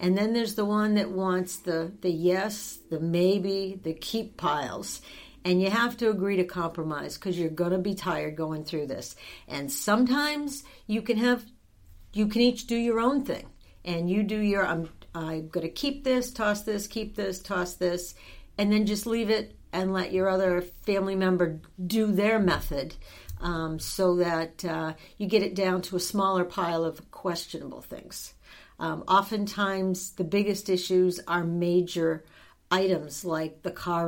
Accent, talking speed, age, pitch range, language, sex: American, 175 wpm, 60-79, 165-205 Hz, English, female